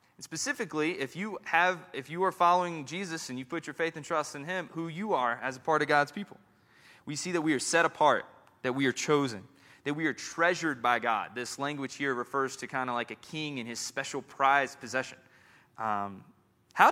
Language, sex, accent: English, male, American